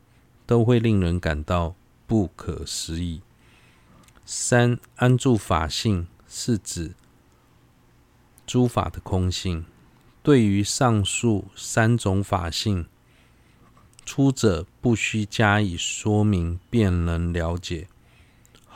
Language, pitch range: Chinese, 90-120 Hz